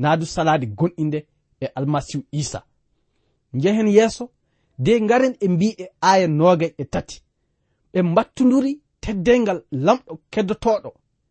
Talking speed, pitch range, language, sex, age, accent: 110 wpm, 155-235 Hz, English, male, 40-59, South African